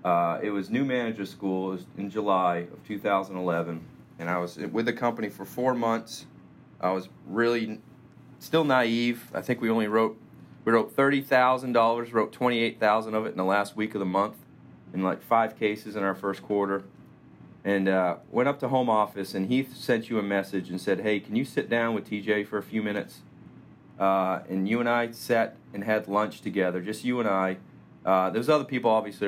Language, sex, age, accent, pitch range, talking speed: English, male, 30-49, American, 95-115 Hz, 200 wpm